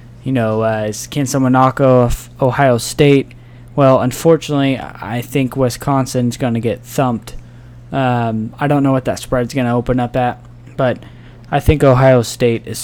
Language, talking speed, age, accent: English, 170 wpm, 10-29, American